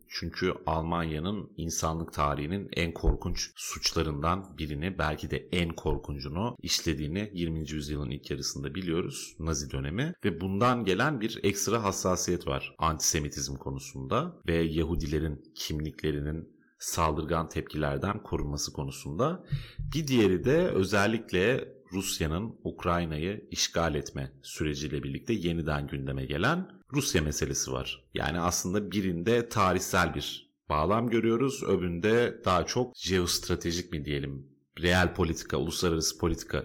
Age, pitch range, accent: 40-59, 80-105 Hz, native